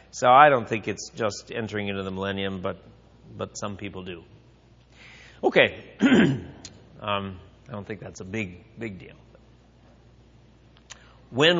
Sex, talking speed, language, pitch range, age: male, 135 wpm, English, 110-140 Hz, 40-59